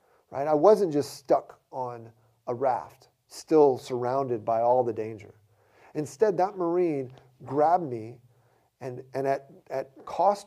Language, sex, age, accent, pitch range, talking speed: English, male, 40-59, American, 125-180 Hz, 140 wpm